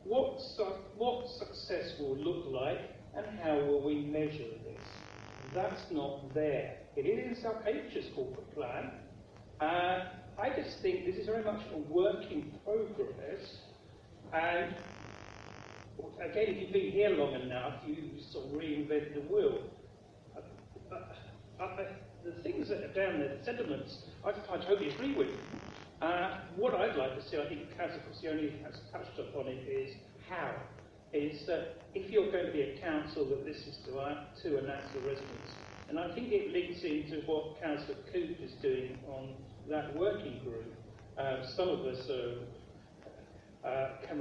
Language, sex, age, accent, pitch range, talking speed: English, male, 40-59, British, 135-200 Hz, 165 wpm